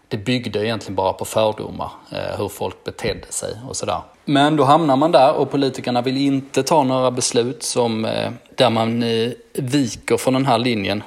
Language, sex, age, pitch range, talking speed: Swedish, male, 20-39, 105-125 Hz, 175 wpm